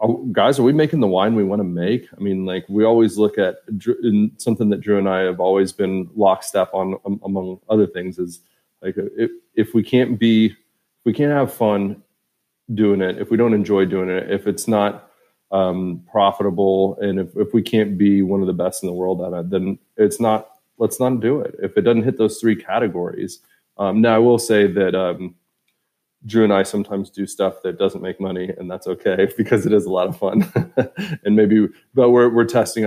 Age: 30-49